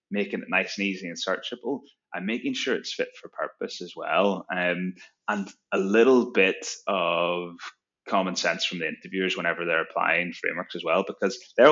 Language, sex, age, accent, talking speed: English, male, 20-39, British, 180 wpm